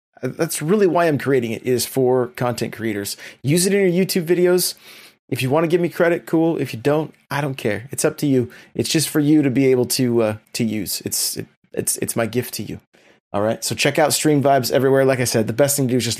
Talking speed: 265 wpm